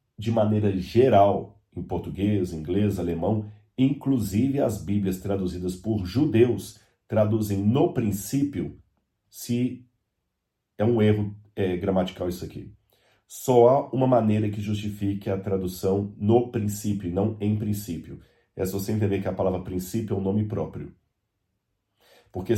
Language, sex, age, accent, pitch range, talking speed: Portuguese, male, 40-59, Brazilian, 95-115 Hz, 130 wpm